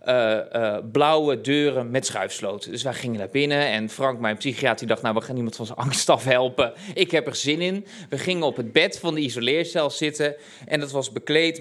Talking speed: 225 wpm